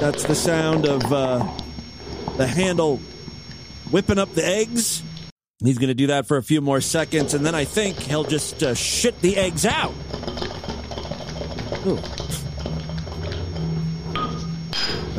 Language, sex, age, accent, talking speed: English, male, 40-59, American, 130 wpm